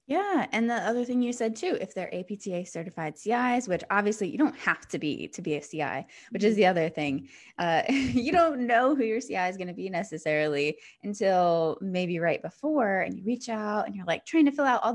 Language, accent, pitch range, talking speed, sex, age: English, American, 185-255 Hz, 220 wpm, female, 20-39